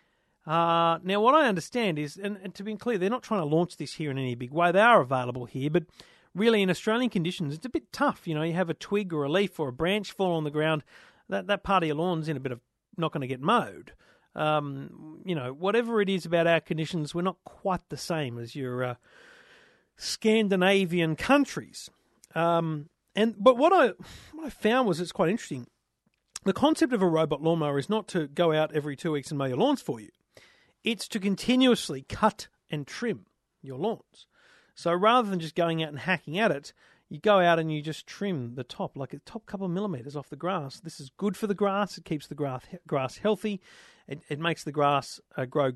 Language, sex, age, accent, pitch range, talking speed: English, male, 40-59, Australian, 150-200 Hz, 225 wpm